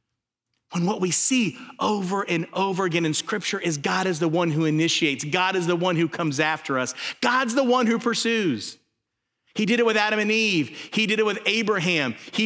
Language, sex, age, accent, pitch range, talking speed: English, male, 40-59, American, 160-230 Hz, 205 wpm